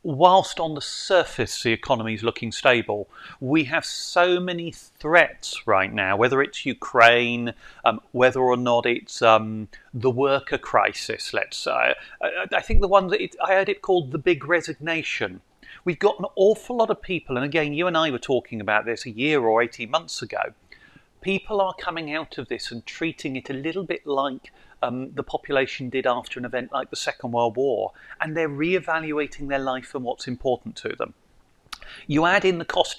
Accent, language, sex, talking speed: British, English, male, 190 wpm